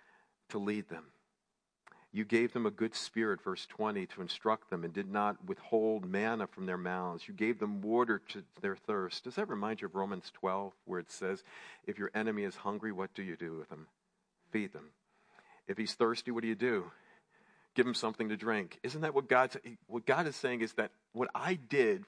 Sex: male